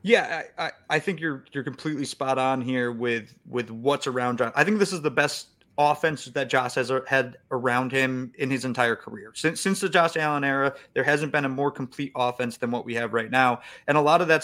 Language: English